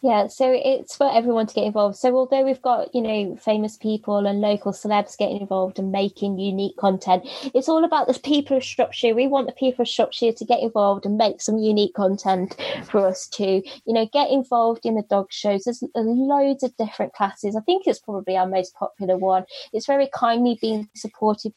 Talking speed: 210 wpm